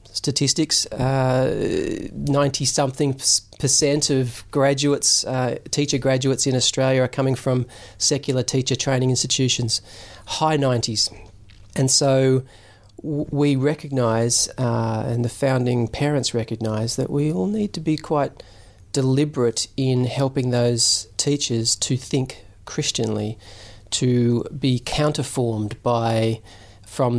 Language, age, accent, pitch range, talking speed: English, 40-59, Australian, 110-130 Hz, 110 wpm